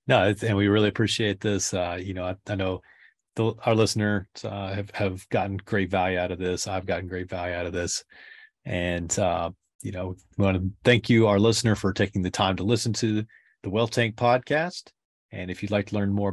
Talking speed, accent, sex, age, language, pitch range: 215 wpm, American, male, 30-49, English, 95-110 Hz